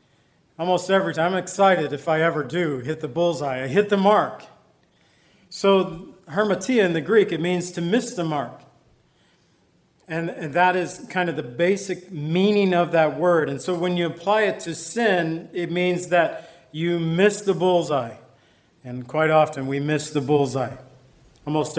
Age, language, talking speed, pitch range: 40-59, English, 170 wpm, 160-195 Hz